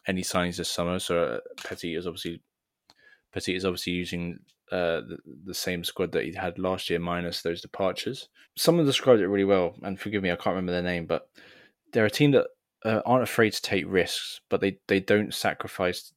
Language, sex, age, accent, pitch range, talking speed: English, male, 20-39, British, 85-100 Hz, 200 wpm